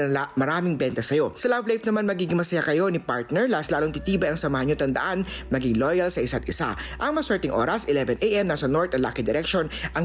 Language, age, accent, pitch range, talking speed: Filipino, 50-69, native, 140-190 Hz, 205 wpm